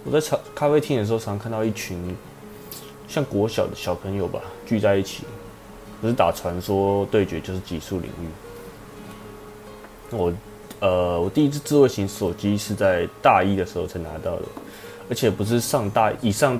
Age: 20-39